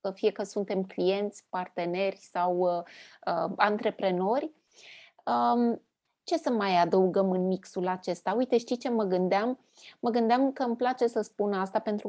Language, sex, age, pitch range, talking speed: Romanian, female, 20-39, 200-245 Hz, 155 wpm